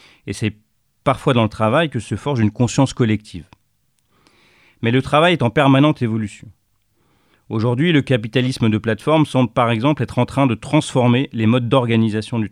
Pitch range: 105-130 Hz